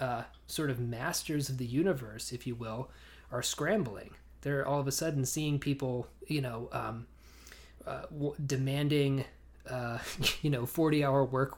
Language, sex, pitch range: English, male, 120-140 Hz